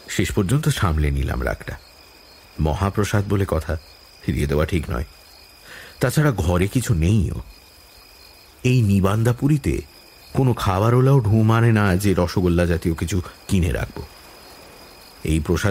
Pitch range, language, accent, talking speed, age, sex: 80-110 Hz, English, Indian, 85 wpm, 50-69, male